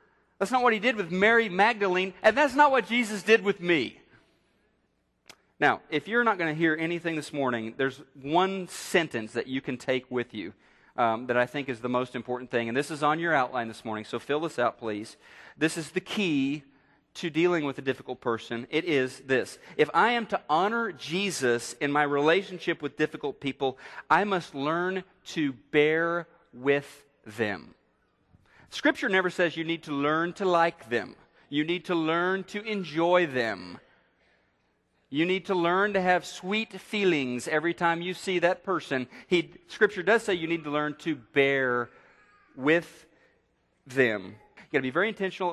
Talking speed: 180 wpm